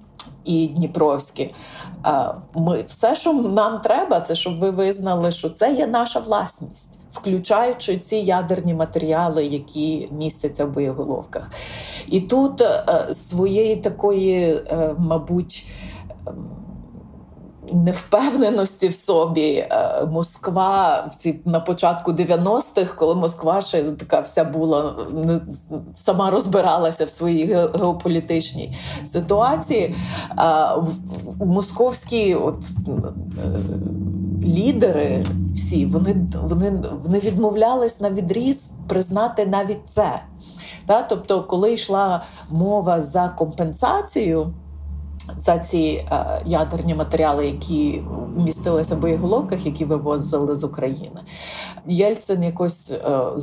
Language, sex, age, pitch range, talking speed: Ukrainian, female, 30-49, 155-200 Hz, 95 wpm